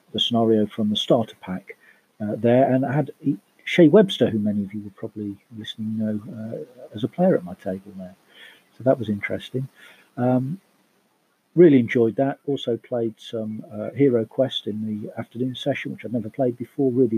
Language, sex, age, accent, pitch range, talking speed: English, male, 50-69, British, 105-130 Hz, 190 wpm